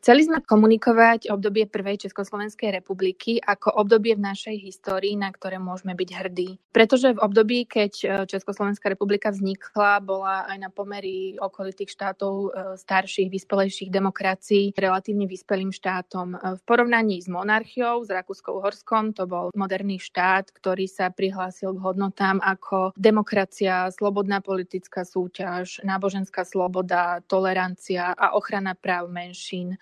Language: Slovak